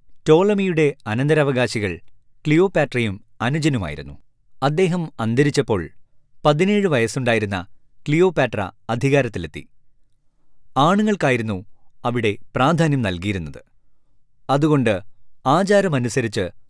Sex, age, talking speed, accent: male, 20-39, 60 wpm, native